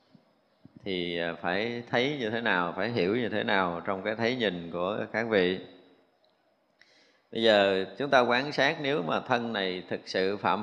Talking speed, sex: 175 wpm, male